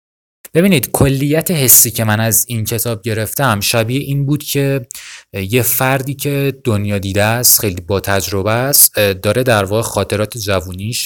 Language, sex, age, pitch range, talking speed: Persian, male, 30-49, 95-120 Hz, 150 wpm